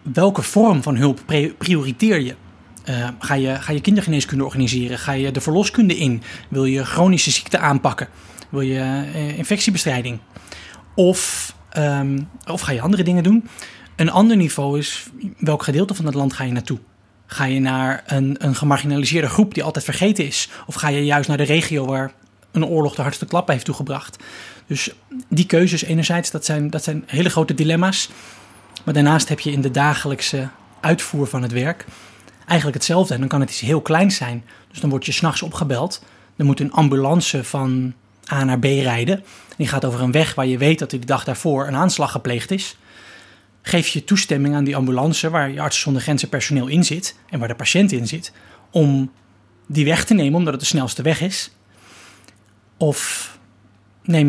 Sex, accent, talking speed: male, Dutch, 185 wpm